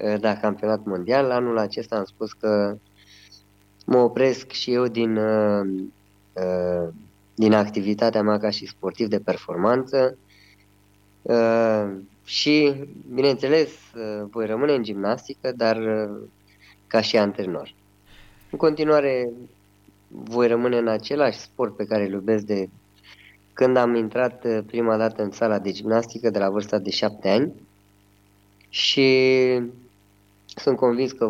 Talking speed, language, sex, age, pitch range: 120 wpm, Romanian, female, 20-39, 100-120 Hz